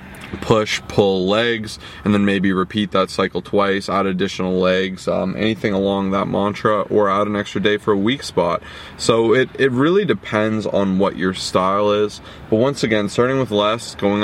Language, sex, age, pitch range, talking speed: English, male, 20-39, 95-110 Hz, 185 wpm